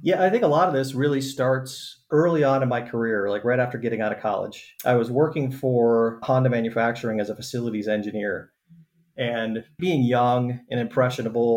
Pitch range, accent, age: 115-130 Hz, American, 30-49